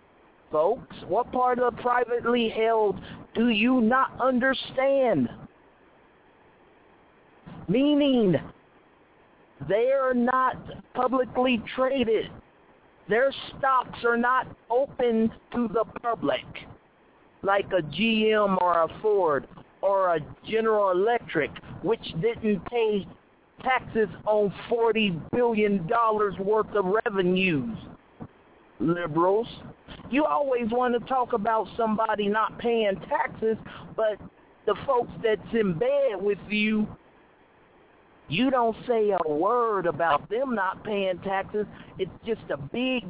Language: English